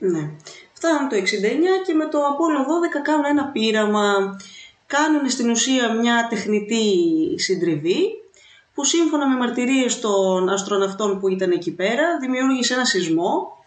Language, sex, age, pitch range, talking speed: Greek, female, 30-49, 195-315 Hz, 135 wpm